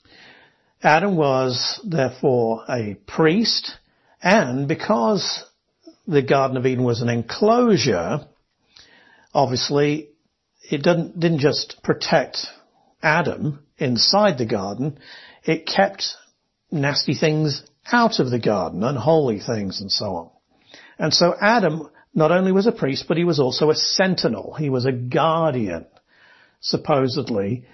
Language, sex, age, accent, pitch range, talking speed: English, male, 50-69, British, 125-170 Hz, 120 wpm